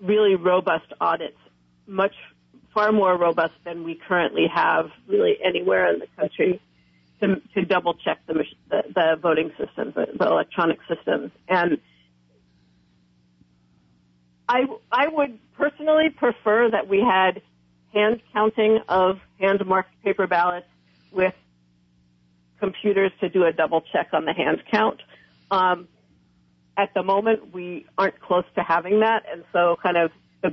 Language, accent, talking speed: English, American, 140 wpm